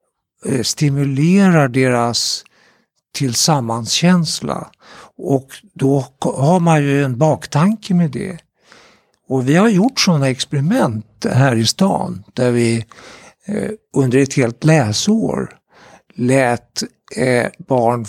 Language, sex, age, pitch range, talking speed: Swedish, male, 60-79, 125-165 Hz, 95 wpm